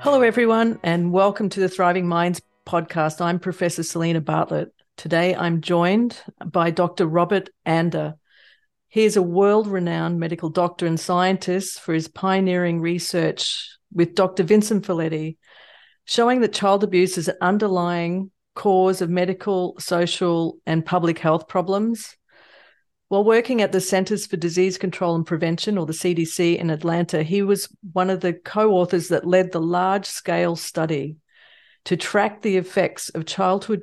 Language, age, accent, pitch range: English, 40-59, Australian, 170-195 Hz